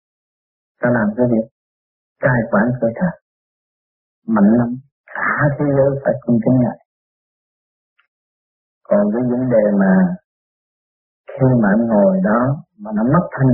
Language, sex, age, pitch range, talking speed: Vietnamese, male, 50-69, 120-190 Hz, 135 wpm